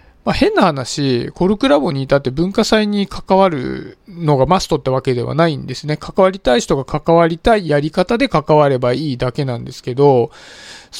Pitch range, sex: 135-185 Hz, male